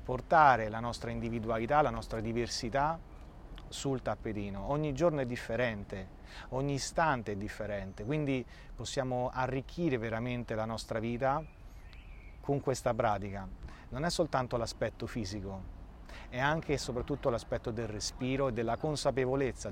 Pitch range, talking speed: 110-135 Hz, 130 wpm